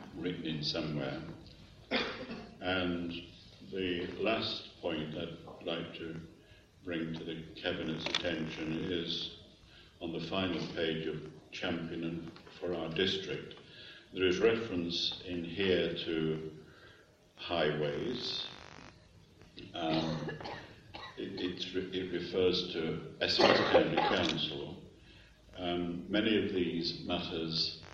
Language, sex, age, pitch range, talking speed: English, male, 50-69, 75-85 Hz, 105 wpm